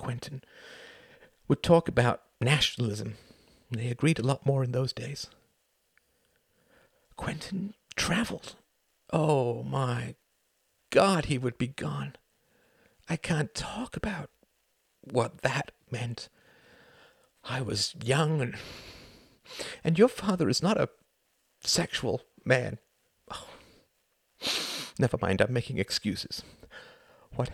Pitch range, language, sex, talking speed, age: 125-185 Hz, English, male, 105 wpm, 50-69